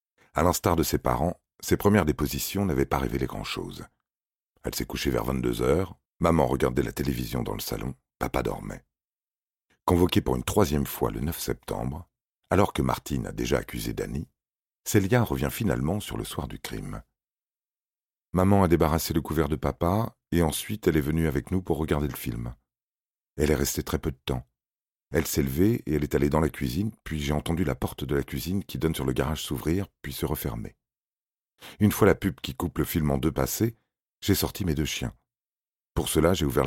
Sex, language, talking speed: male, French, 200 wpm